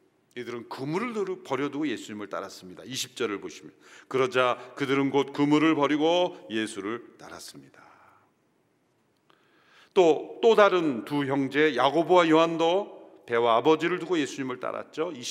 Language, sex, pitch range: Korean, male, 130-180 Hz